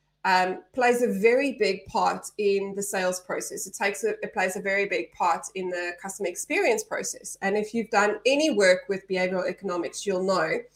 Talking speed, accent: 195 wpm, Australian